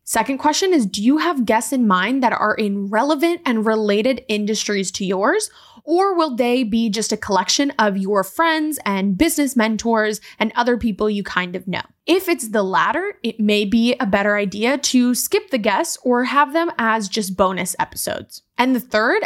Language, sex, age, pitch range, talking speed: English, female, 20-39, 215-275 Hz, 195 wpm